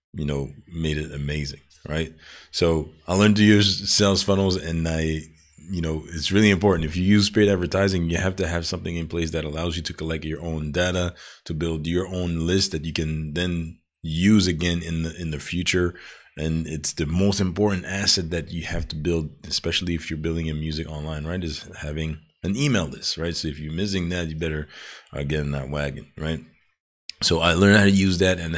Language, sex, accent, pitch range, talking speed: English, male, American, 80-95 Hz, 210 wpm